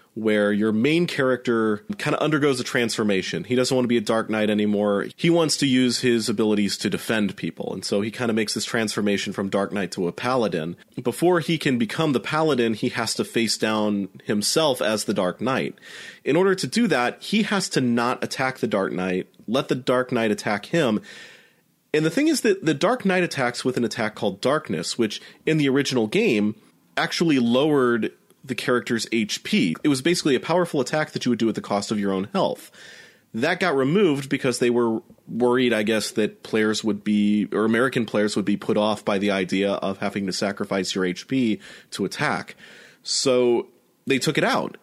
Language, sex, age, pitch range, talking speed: English, male, 30-49, 105-145 Hz, 205 wpm